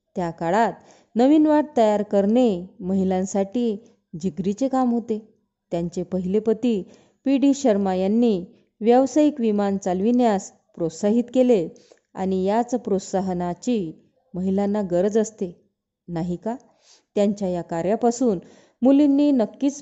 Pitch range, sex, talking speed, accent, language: 185-235 Hz, female, 105 wpm, native, Marathi